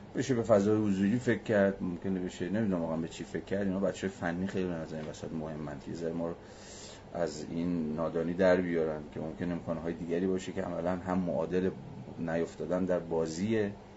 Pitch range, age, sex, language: 85-100 Hz, 30-49, male, Persian